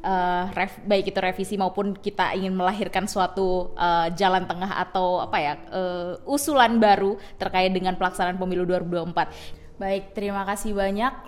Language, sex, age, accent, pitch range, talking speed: Indonesian, female, 20-39, native, 205-255 Hz, 150 wpm